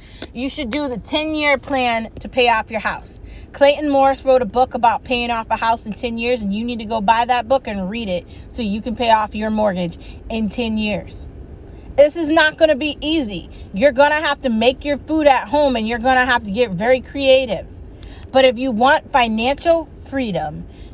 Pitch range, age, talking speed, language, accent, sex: 230-285 Hz, 30-49, 210 wpm, English, American, female